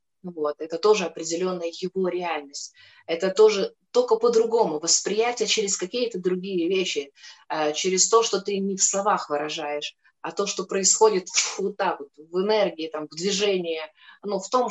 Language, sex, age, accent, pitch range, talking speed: Russian, female, 20-39, native, 160-195 Hz, 150 wpm